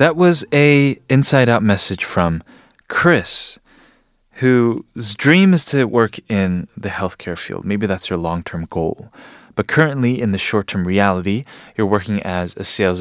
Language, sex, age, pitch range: Korean, male, 30-49, 95-120 Hz